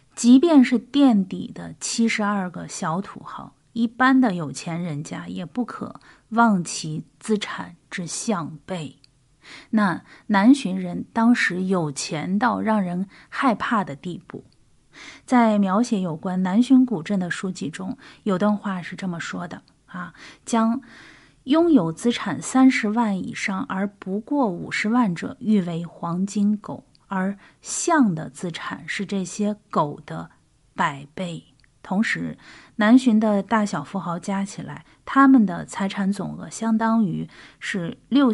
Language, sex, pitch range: Chinese, female, 175-230 Hz